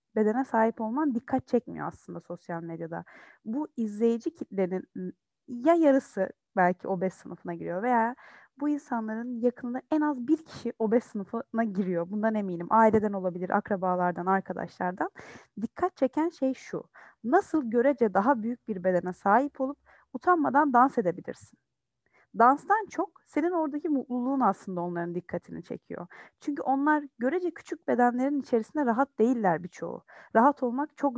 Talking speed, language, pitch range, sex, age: 135 wpm, Turkish, 195-275 Hz, female, 30-49